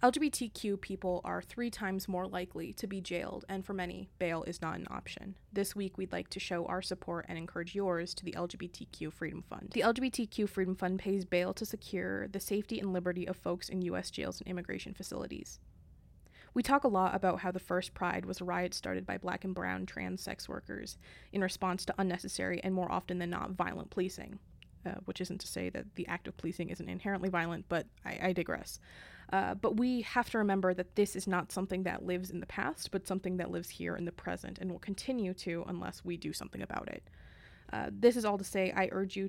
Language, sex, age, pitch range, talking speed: English, female, 20-39, 180-200 Hz, 220 wpm